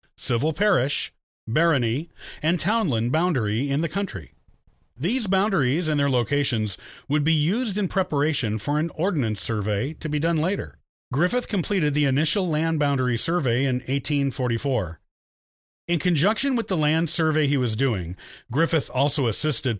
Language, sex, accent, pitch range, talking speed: English, male, American, 125-170 Hz, 145 wpm